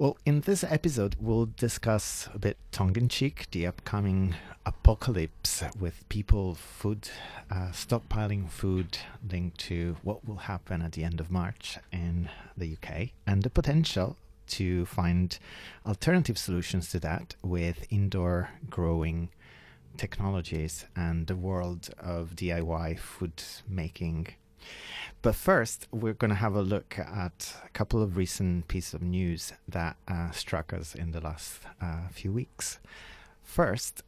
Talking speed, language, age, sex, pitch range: 140 wpm, English, 30-49, male, 85-105 Hz